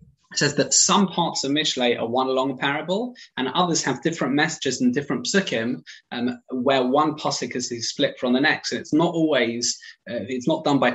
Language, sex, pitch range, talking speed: English, male, 125-160 Hz, 205 wpm